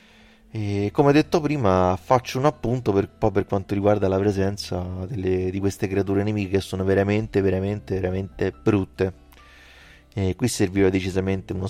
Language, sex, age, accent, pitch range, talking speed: Italian, male, 30-49, native, 95-115 Hz, 150 wpm